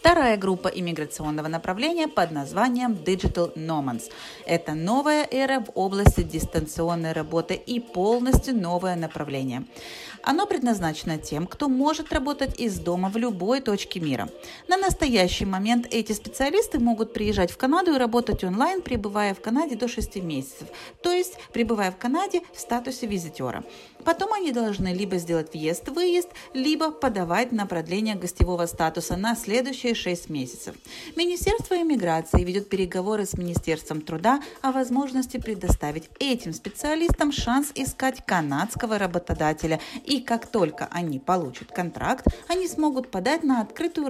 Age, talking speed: 40-59, 135 wpm